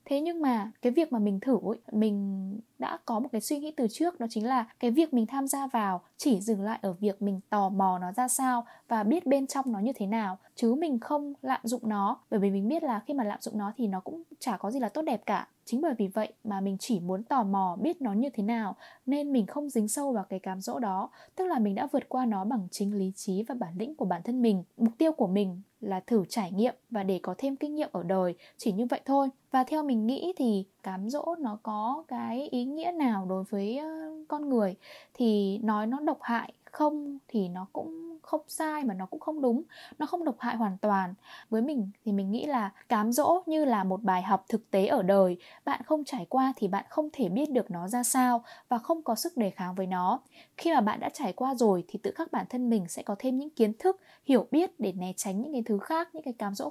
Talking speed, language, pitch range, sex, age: 260 wpm, Vietnamese, 205-280 Hz, female, 10-29